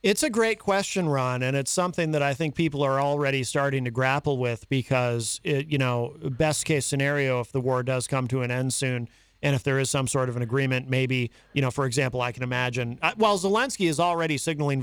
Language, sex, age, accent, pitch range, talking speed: English, male, 40-59, American, 130-175 Hz, 225 wpm